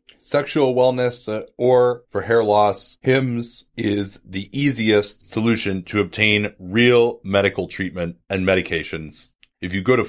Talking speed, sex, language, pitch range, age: 130 wpm, male, English, 95-120 Hz, 30-49